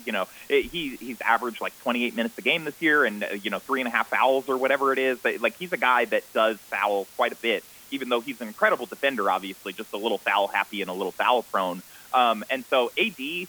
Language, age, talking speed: English, 30-49, 260 wpm